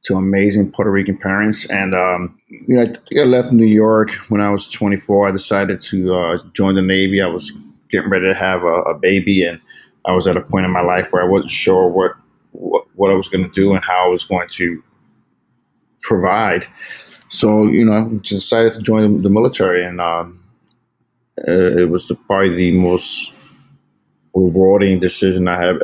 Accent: American